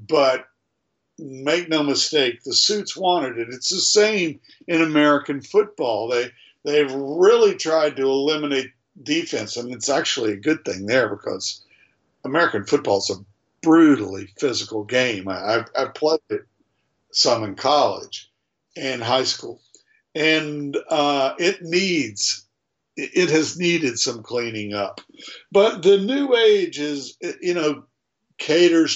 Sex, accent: male, American